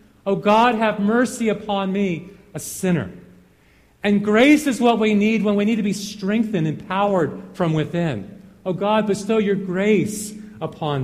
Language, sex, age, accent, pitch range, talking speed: English, male, 40-59, American, 160-225 Hz, 165 wpm